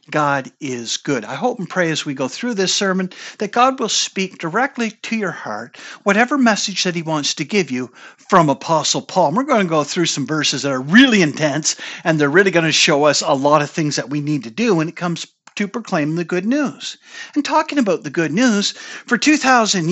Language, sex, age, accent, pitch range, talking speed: English, male, 50-69, American, 155-250 Hz, 225 wpm